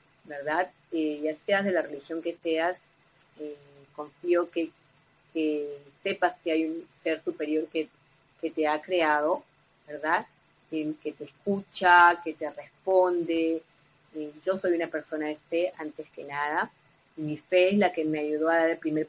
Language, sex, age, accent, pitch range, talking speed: Spanish, female, 30-49, Argentinian, 150-170 Hz, 165 wpm